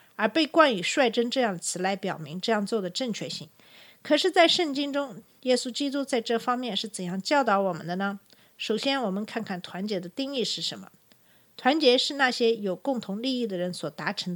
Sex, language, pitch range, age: female, Chinese, 190-255 Hz, 50-69